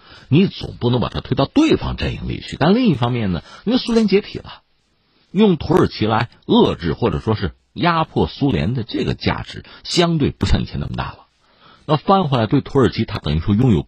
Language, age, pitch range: Chinese, 50-69, 95-155 Hz